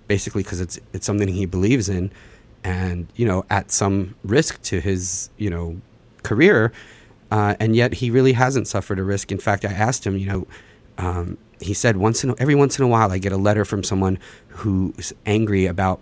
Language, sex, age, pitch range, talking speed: English, male, 30-49, 90-105 Hz, 200 wpm